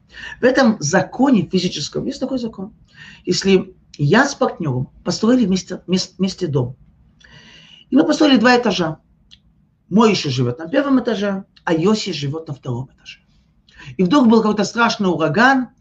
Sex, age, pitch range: male, 40-59, 130-190 Hz